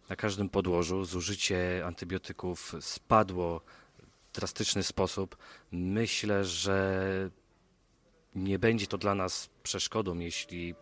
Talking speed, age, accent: 100 wpm, 30-49, native